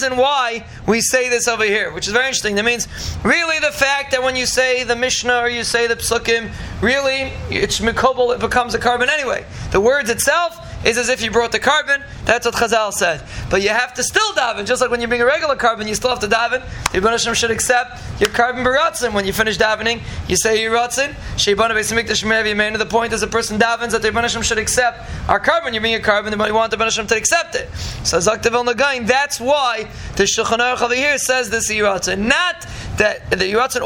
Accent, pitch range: American, 225-255 Hz